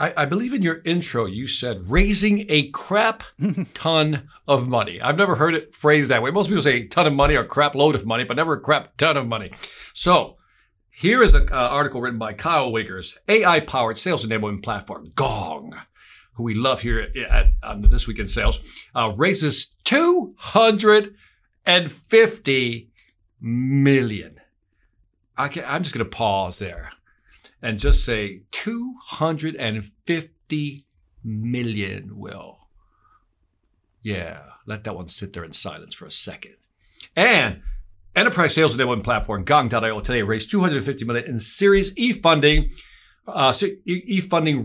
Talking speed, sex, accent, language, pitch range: 145 wpm, male, American, English, 115-185 Hz